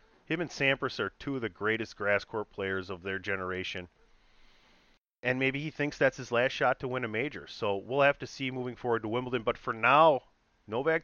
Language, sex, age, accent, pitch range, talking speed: English, male, 30-49, American, 100-135 Hz, 210 wpm